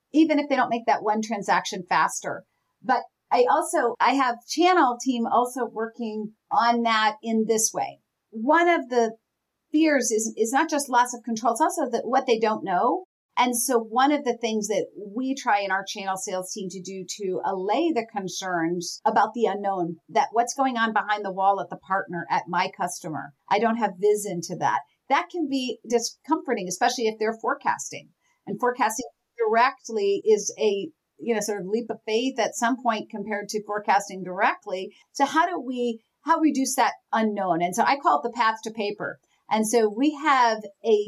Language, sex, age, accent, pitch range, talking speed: English, female, 40-59, American, 205-255 Hz, 195 wpm